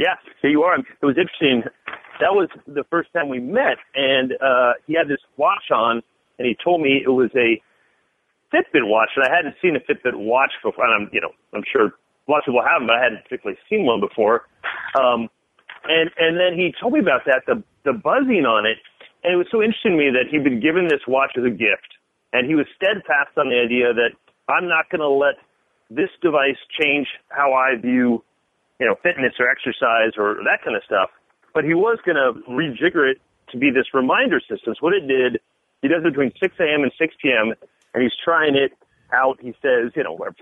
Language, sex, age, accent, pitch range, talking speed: English, male, 40-59, American, 125-165 Hz, 220 wpm